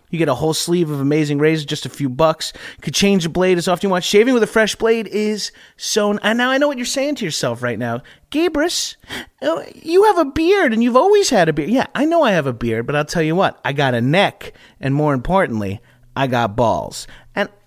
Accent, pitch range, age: American, 150-200 Hz, 30-49